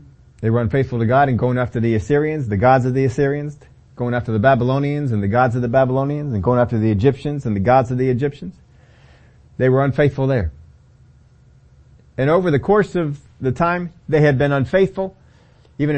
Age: 40-59